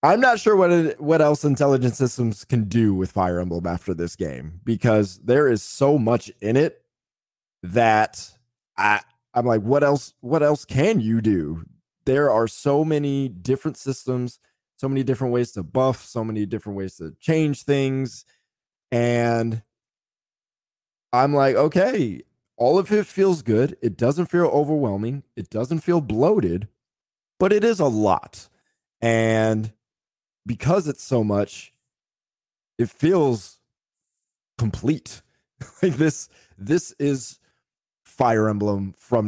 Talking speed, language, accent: 140 wpm, English, American